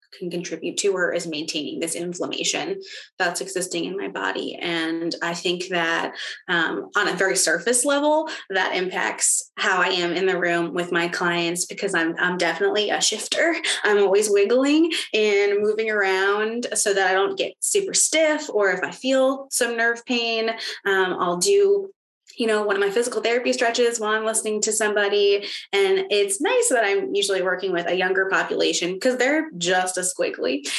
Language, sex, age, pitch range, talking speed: English, female, 20-39, 180-260 Hz, 180 wpm